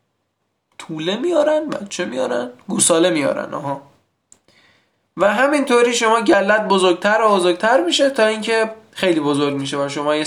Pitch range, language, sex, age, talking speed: 155-200 Hz, Persian, male, 20-39, 135 wpm